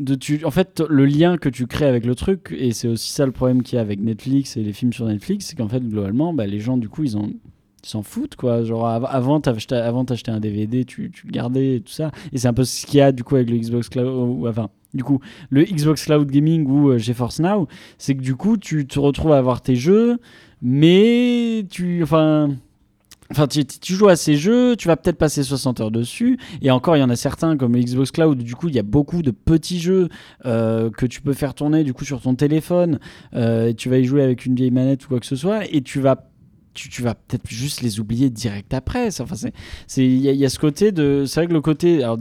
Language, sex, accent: French, male, French